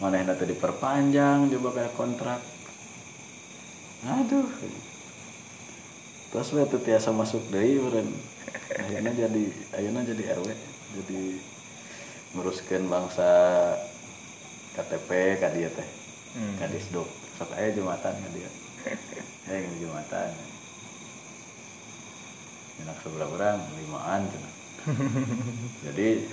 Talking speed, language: 90 wpm, Indonesian